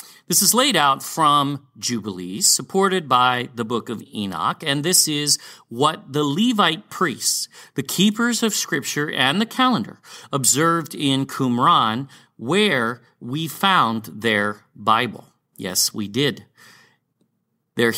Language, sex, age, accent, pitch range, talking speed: English, male, 40-59, American, 120-170 Hz, 125 wpm